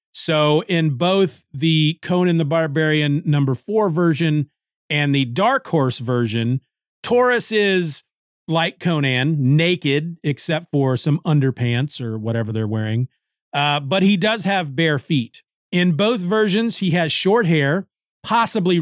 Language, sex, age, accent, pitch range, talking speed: English, male, 40-59, American, 135-180 Hz, 135 wpm